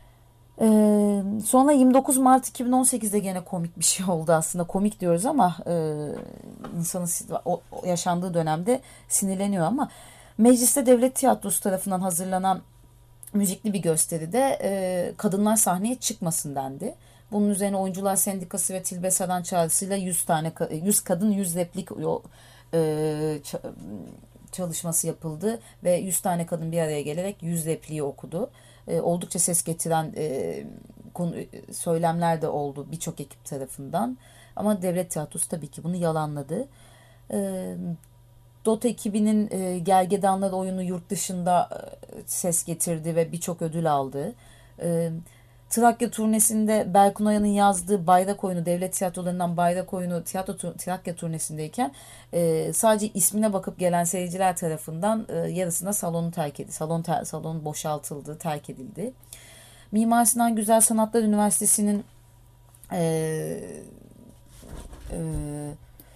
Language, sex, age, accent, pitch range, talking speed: Turkish, female, 30-49, native, 160-205 Hz, 115 wpm